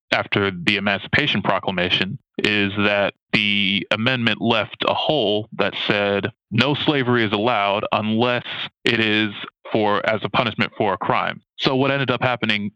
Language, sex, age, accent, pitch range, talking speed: English, male, 20-39, American, 100-115 Hz, 150 wpm